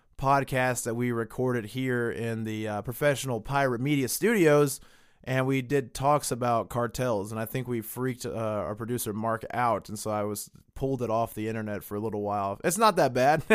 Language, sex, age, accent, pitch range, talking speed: English, male, 20-39, American, 115-145 Hz, 200 wpm